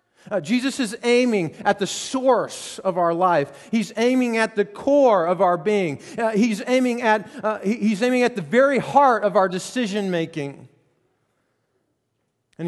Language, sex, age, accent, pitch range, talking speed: English, male, 40-59, American, 140-200 Hz, 150 wpm